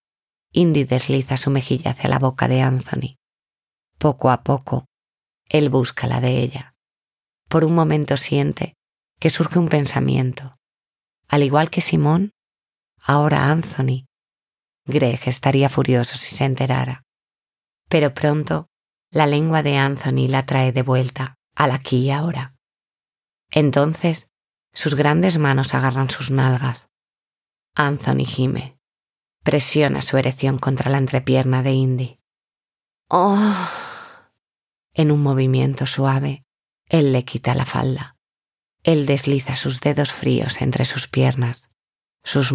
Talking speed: 125 wpm